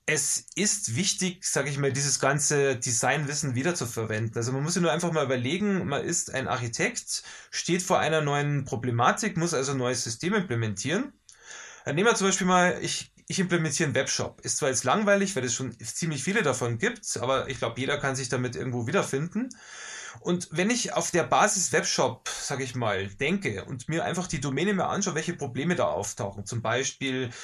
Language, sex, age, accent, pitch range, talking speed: German, male, 20-39, German, 130-175 Hz, 190 wpm